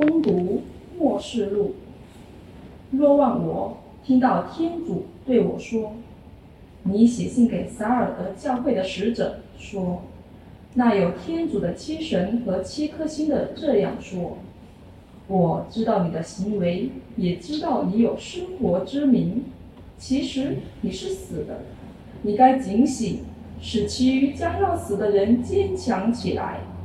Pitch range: 205-280 Hz